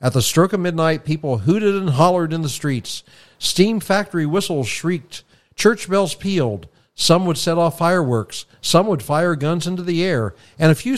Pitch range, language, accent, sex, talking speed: 125-170 Hz, English, American, male, 185 wpm